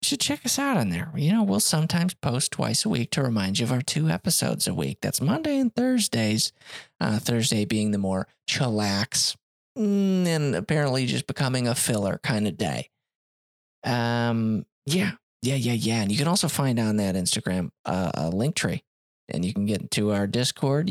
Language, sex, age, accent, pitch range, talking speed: English, male, 20-39, American, 105-160 Hz, 190 wpm